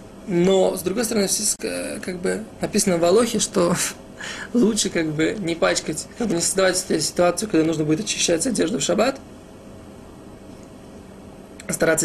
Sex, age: male, 20-39